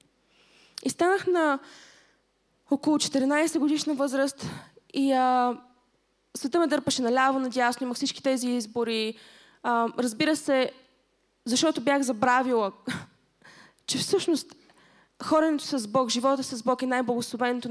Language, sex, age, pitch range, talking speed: Bulgarian, female, 20-39, 235-285 Hz, 115 wpm